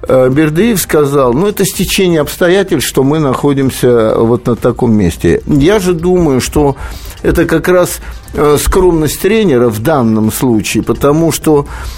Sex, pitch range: male, 125-170 Hz